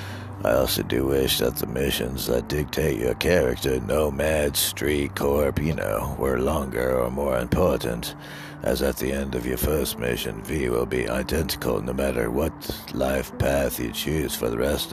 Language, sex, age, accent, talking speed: English, male, 60-79, American, 175 wpm